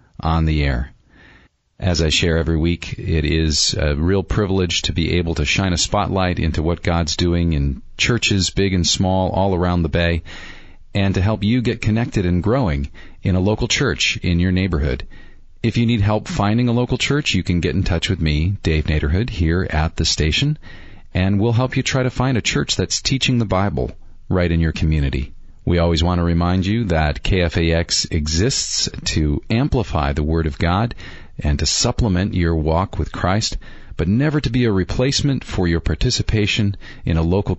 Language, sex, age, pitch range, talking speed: English, male, 40-59, 80-105 Hz, 190 wpm